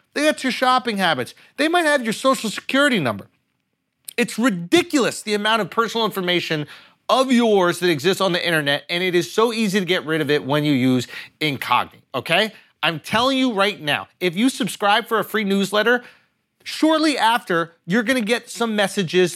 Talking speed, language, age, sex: 190 wpm, English, 30-49, male